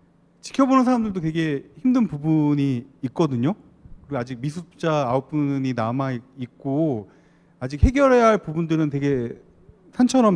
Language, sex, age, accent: Korean, male, 40-59, native